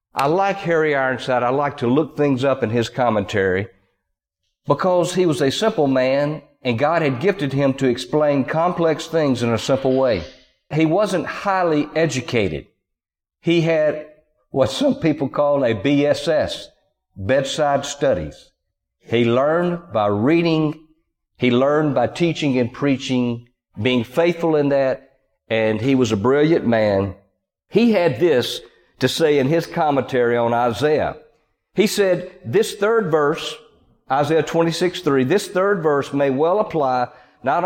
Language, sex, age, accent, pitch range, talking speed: English, male, 50-69, American, 130-180 Hz, 145 wpm